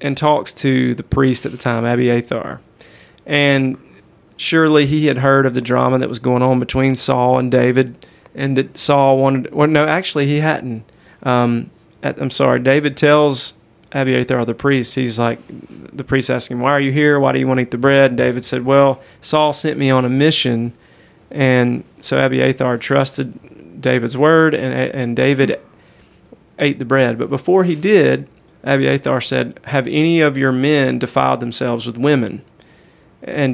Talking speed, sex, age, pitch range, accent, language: 175 wpm, male, 30-49, 120-140 Hz, American, English